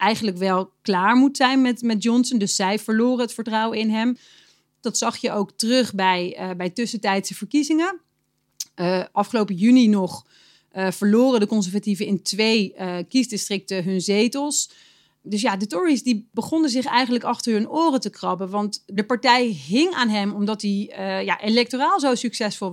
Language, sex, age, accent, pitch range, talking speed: Dutch, female, 30-49, Dutch, 195-240 Hz, 165 wpm